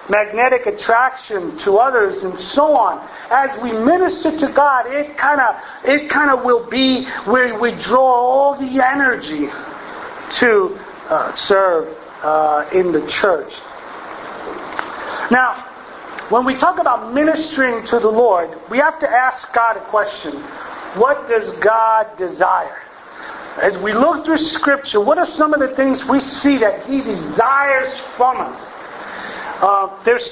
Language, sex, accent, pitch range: English, male, American, 215-280 Hz